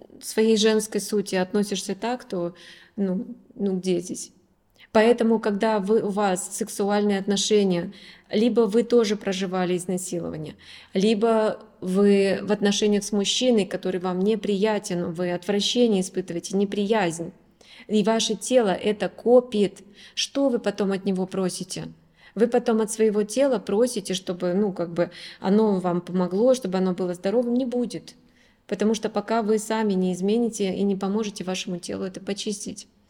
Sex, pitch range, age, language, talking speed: female, 185-220 Hz, 20-39, Russian, 140 wpm